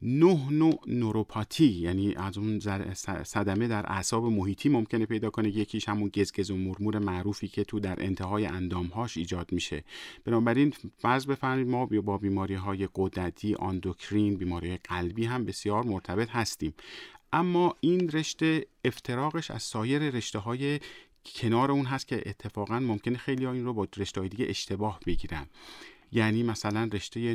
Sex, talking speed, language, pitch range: male, 145 wpm, Persian, 100-125 Hz